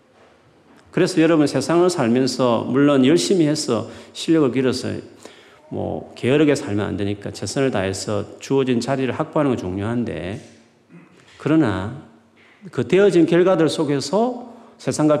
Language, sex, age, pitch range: Korean, male, 40-59, 105-165 Hz